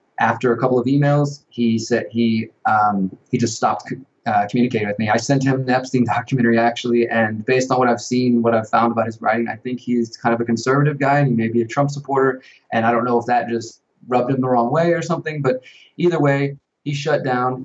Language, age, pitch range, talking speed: English, 20-39, 115-135 Hz, 240 wpm